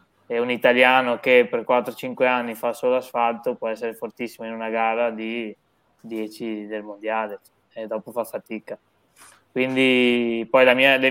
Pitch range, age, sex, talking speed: 110-130 Hz, 20-39, male, 155 wpm